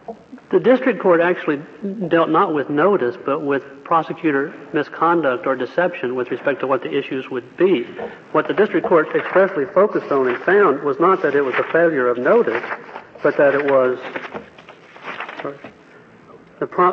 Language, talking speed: English, 165 wpm